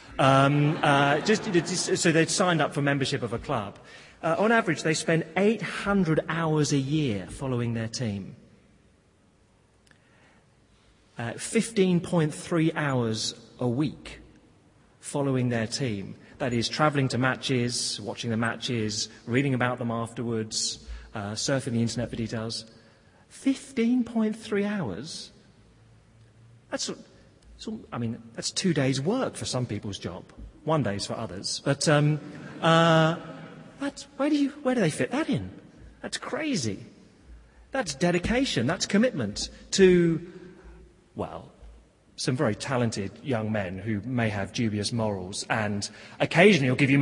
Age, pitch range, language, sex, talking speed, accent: 30-49, 115-170 Hz, English, male, 130 wpm, British